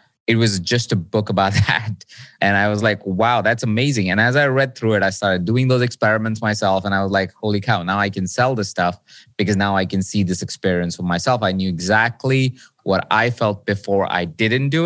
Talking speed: 230 wpm